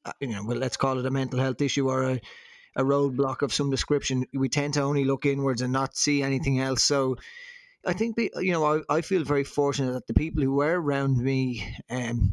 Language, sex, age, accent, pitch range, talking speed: English, male, 20-39, Irish, 130-145 Hz, 235 wpm